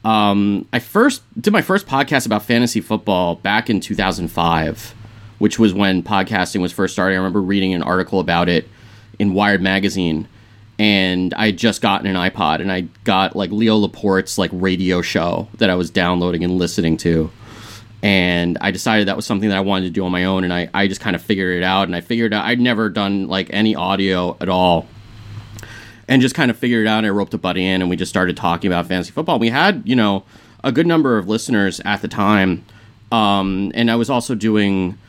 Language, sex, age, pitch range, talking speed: English, male, 30-49, 95-115 Hz, 215 wpm